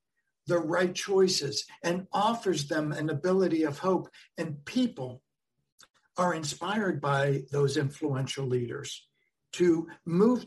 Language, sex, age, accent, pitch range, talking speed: English, male, 60-79, American, 145-180 Hz, 115 wpm